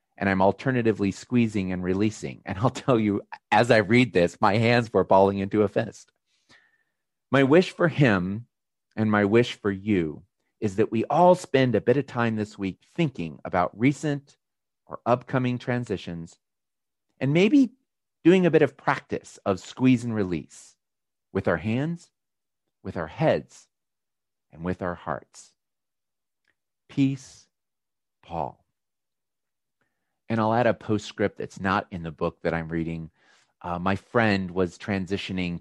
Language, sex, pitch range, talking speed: English, male, 85-115 Hz, 150 wpm